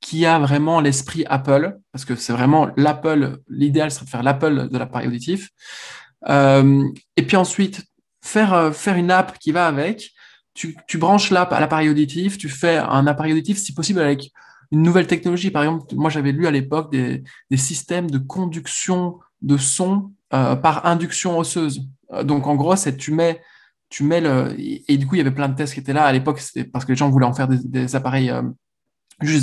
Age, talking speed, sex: 20-39, 205 wpm, male